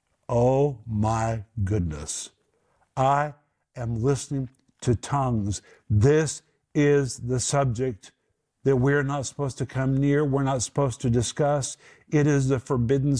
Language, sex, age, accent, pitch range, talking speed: English, male, 50-69, American, 105-140 Hz, 125 wpm